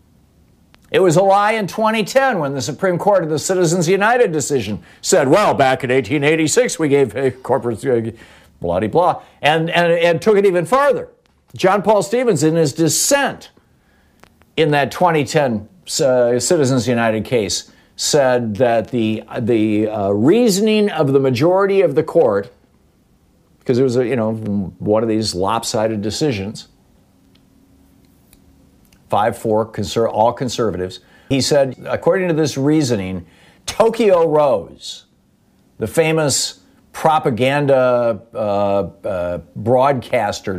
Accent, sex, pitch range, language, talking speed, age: American, male, 105-160 Hz, English, 130 wpm, 50-69